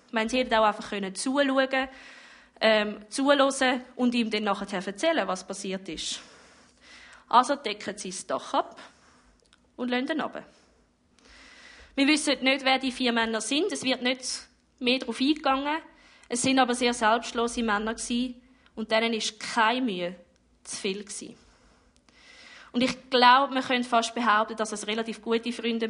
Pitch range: 205-255 Hz